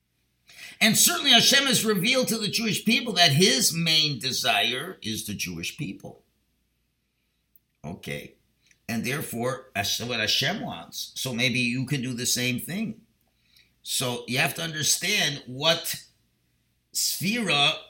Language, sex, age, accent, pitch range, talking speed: English, male, 50-69, American, 110-170 Hz, 125 wpm